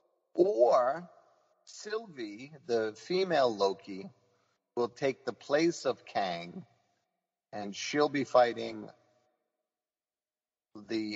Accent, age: American, 50-69